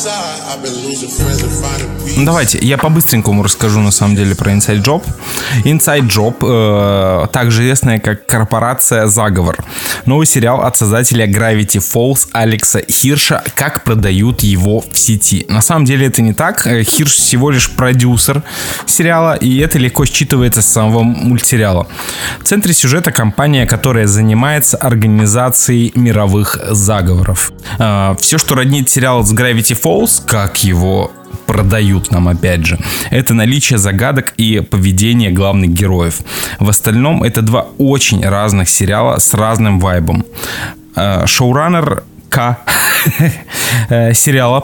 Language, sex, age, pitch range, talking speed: Russian, male, 20-39, 105-135 Hz, 125 wpm